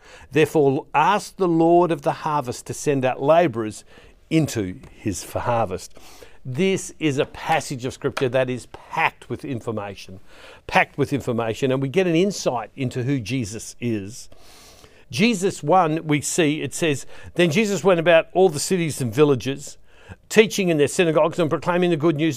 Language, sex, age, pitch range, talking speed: English, male, 60-79, 120-170 Hz, 165 wpm